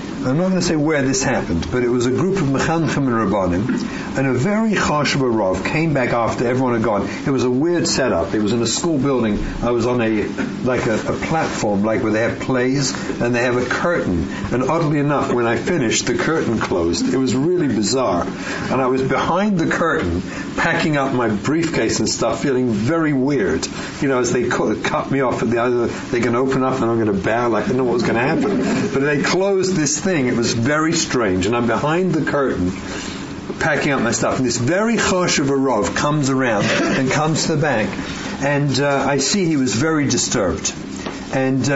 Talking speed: 220 wpm